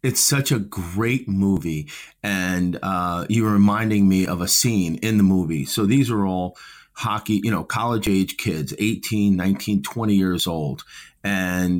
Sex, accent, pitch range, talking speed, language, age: male, American, 90-105 Hz, 165 wpm, English, 30-49